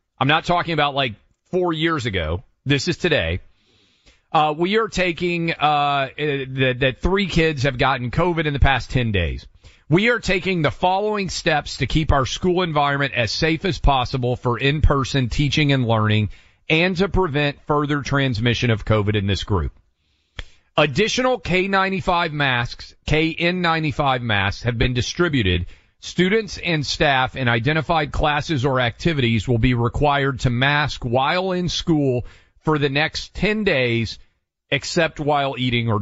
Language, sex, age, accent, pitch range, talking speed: English, male, 40-59, American, 120-165 Hz, 150 wpm